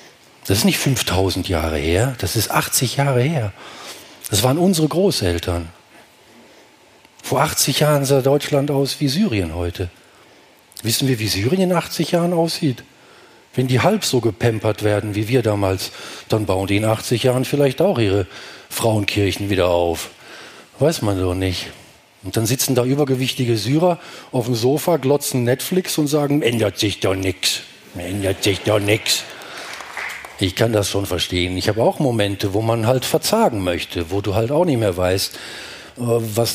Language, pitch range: German, 105-150 Hz